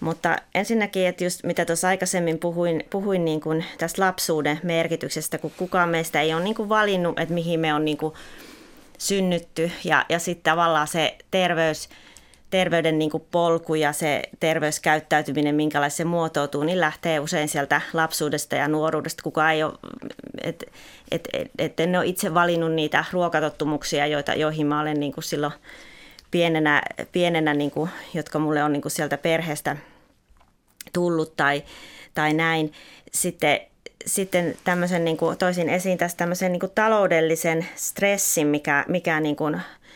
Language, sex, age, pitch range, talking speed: Finnish, female, 30-49, 150-175 Hz, 150 wpm